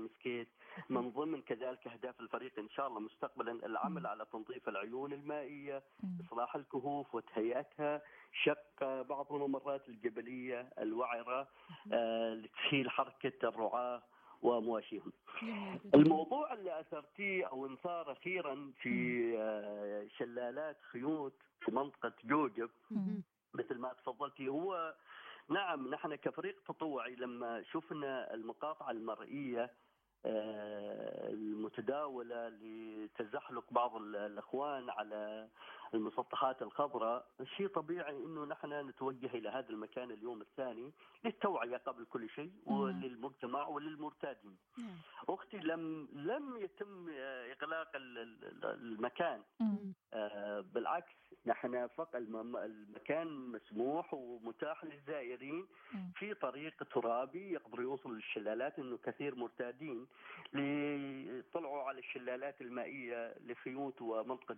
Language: Arabic